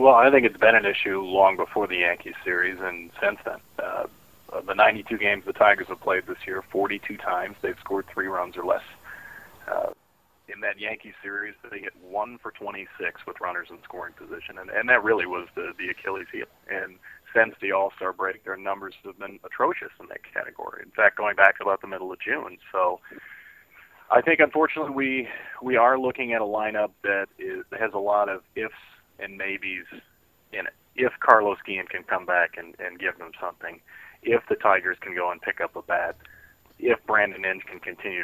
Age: 30-49